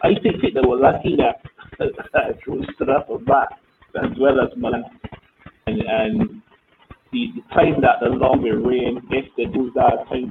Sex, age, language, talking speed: male, 30-49, English, 155 wpm